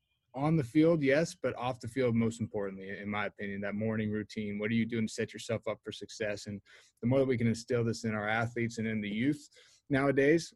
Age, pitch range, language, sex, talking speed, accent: 20-39, 105-125 Hz, English, male, 240 wpm, American